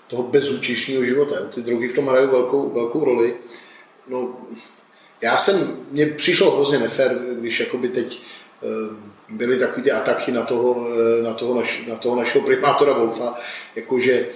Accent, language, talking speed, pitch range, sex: native, Czech, 145 wpm, 120-150 Hz, male